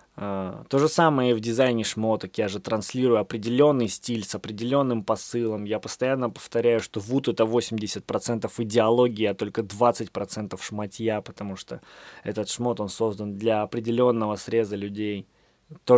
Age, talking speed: 20-39, 145 wpm